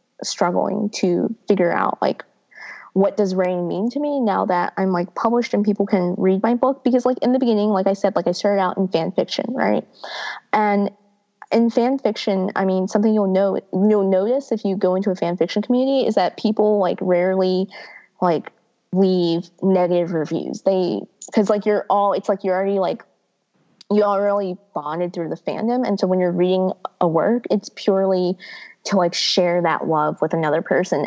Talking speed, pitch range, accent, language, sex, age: 190 wpm, 180-210 Hz, American, English, female, 20-39